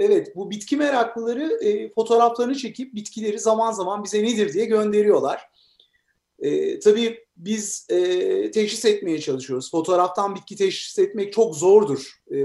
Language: Turkish